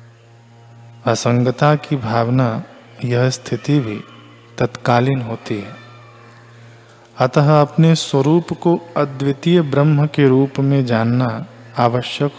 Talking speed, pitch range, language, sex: 95 wpm, 115-135 Hz, Hindi, male